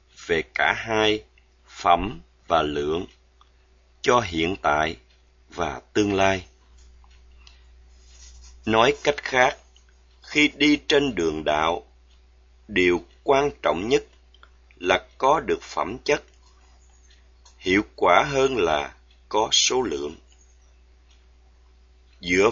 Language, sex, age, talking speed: Vietnamese, male, 30-49, 100 wpm